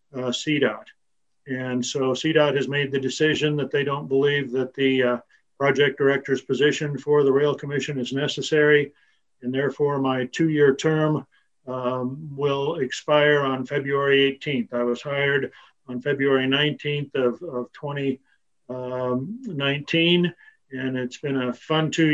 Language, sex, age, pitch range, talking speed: English, male, 50-69, 130-150 Hz, 140 wpm